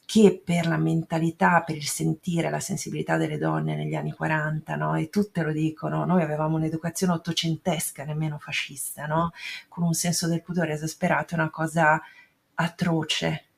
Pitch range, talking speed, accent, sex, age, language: 155-185 Hz, 150 wpm, native, female, 40-59, Italian